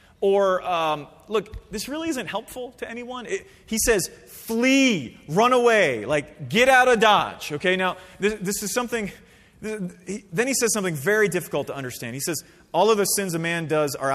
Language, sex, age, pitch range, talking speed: English, male, 30-49, 125-200 Hz, 195 wpm